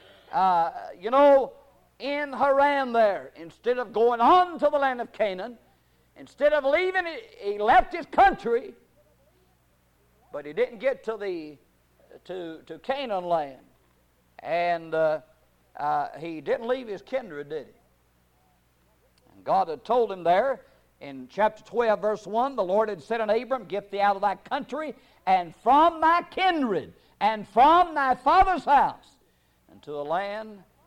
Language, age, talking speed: English, 60-79, 150 wpm